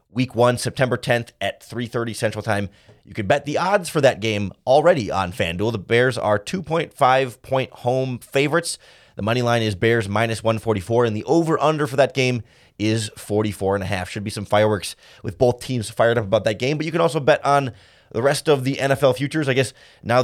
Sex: male